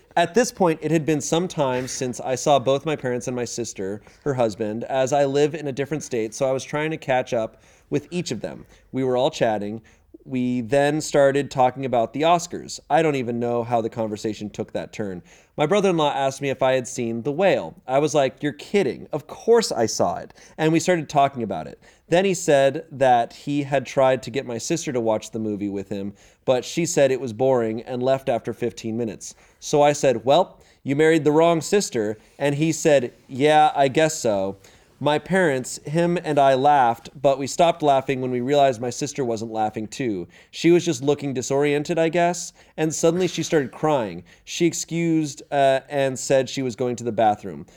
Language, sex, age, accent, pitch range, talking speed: English, male, 30-49, American, 120-150 Hz, 210 wpm